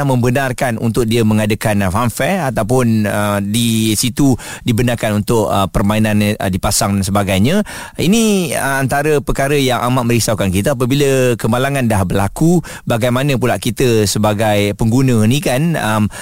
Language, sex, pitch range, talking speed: Malay, male, 110-135 Hz, 135 wpm